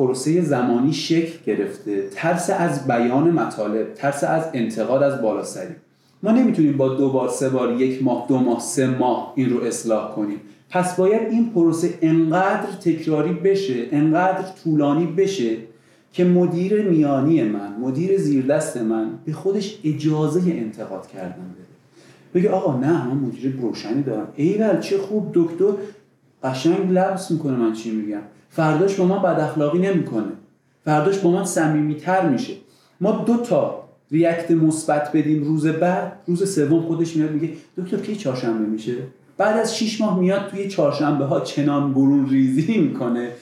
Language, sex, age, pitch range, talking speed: Persian, male, 30-49, 130-180 Hz, 155 wpm